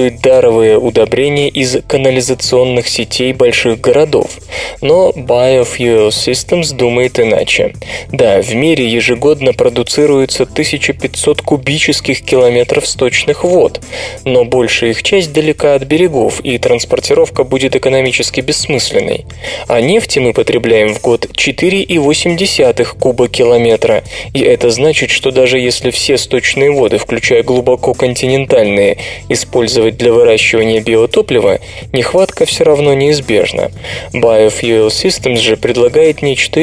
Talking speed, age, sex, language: 110 wpm, 20-39, male, Russian